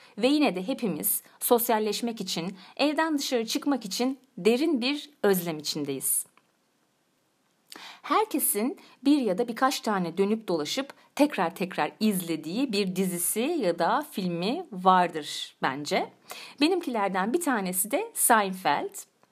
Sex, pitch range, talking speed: female, 190-280 Hz, 115 wpm